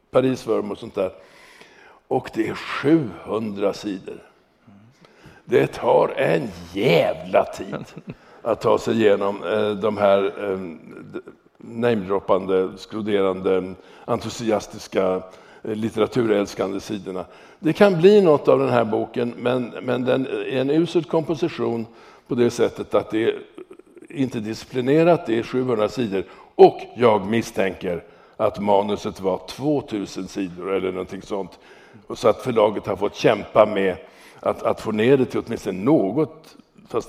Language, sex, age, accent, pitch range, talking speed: English, male, 60-79, Swedish, 100-130 Hz, 130 wpm